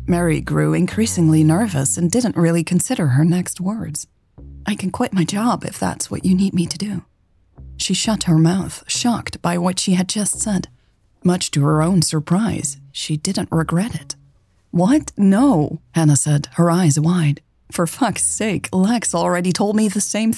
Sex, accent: female, American